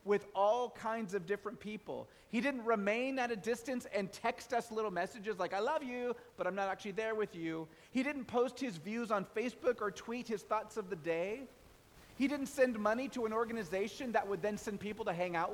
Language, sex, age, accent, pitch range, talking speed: English, male, 30-49, American, 185-230 Hz, 220 wpm